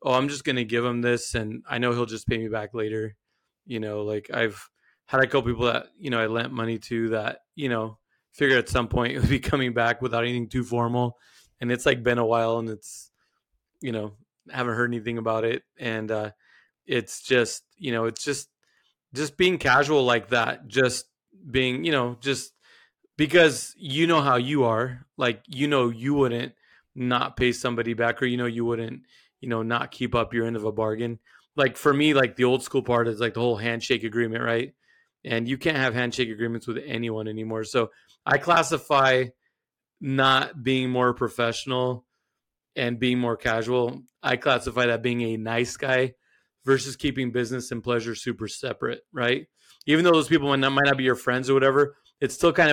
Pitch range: 115-135 Hz